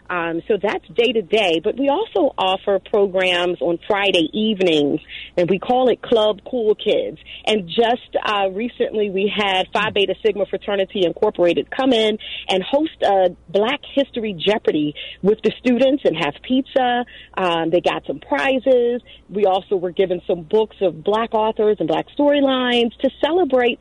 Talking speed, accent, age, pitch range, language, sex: 160 wpm, American, 40-59, 195-240 Hz, English, female